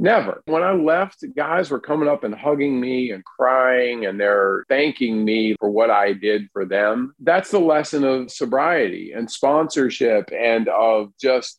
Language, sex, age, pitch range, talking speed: English, male, 50-69, 110-140 Hz, 170 wpm